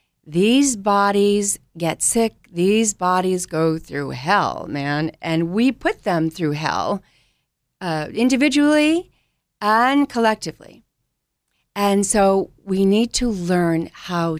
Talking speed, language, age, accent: 115 wpm, English, 40-59, American